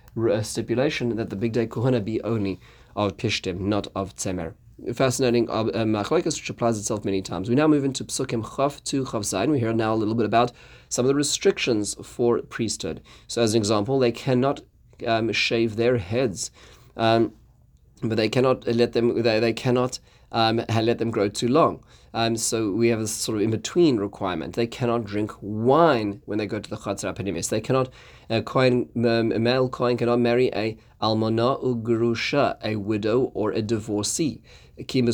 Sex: male